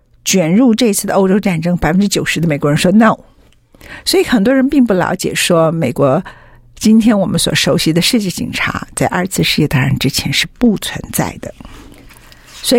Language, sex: Chinese, female